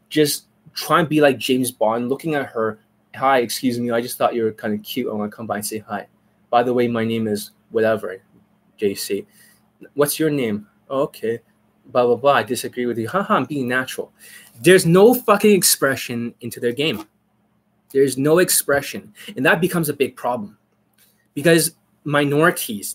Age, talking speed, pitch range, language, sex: 20-39, 185 wpm, 120-170 Hz, English, male